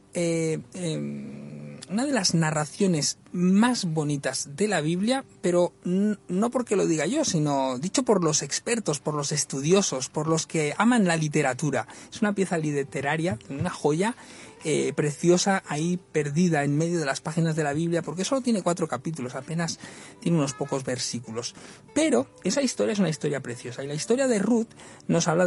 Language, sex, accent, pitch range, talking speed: Spanish, male, Spanish, 145-195 Hz, 170 wpm